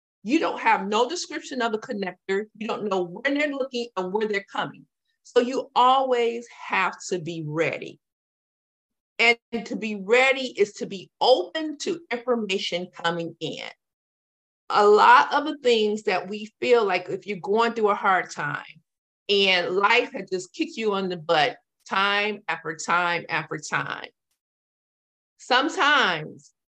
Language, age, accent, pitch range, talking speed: English, 50-69, American, 190-255 Hz, 150 wpm